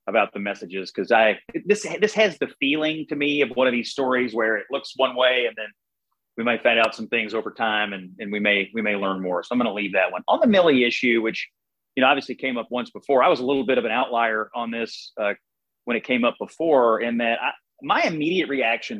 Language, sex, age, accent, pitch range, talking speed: English, male, 30-49, American, 110-140 Hz, 255 wpm